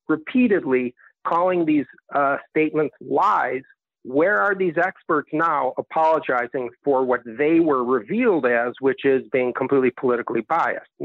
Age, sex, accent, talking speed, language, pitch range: 50-69, male, American, 130 wpm, English, 145-205 Hz